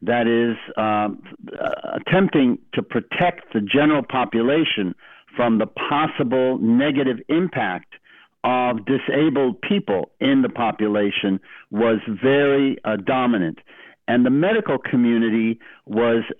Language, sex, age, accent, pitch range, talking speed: English, male, 60-79, American, 120-145 Hz, 105 wpm